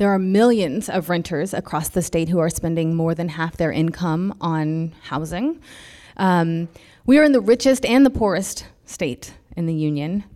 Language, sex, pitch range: English, female, 160-200 Hz